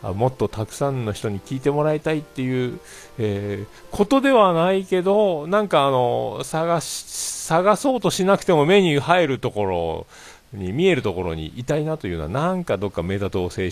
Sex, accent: male, native